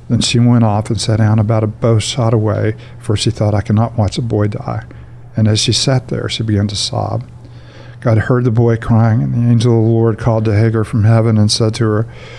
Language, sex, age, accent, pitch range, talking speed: English, male, 50-69, American, 105-120 Hz, 240 wpm